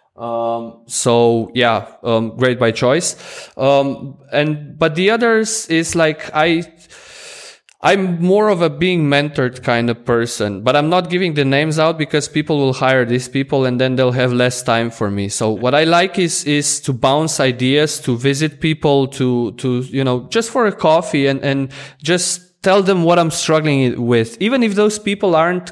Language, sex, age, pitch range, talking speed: English, male, 20-39, 130-175 Hz, 185 wpm